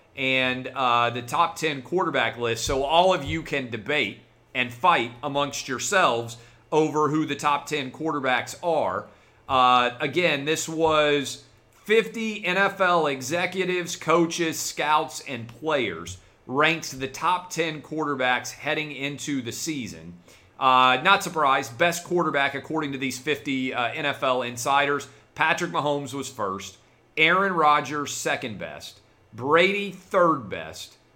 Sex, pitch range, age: male, 120-160 Hz, 40-59